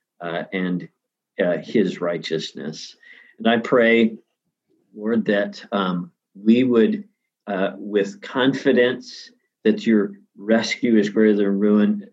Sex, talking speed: male, 115 wpm